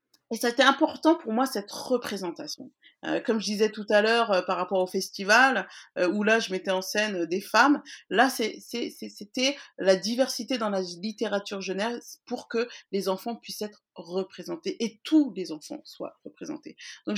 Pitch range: 190-270 Hz